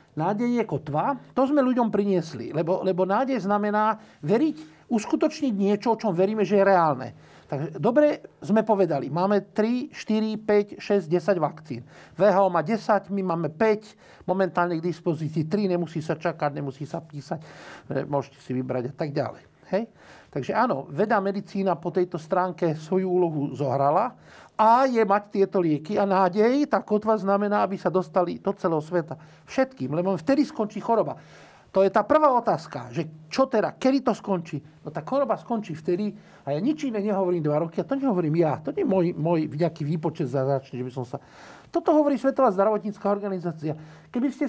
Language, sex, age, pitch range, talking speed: Slovak, male, 50-69, 165-225 Hz, 180 wpm